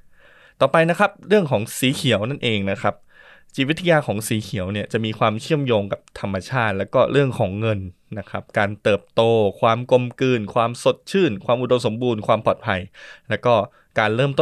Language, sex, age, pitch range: Thai, male, 20-39, 105-130 Hz